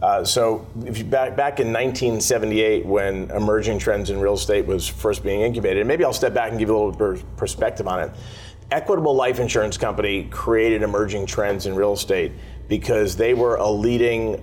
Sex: male